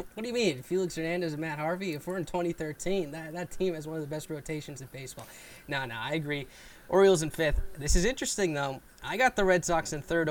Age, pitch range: 20-39, 140-175 Hz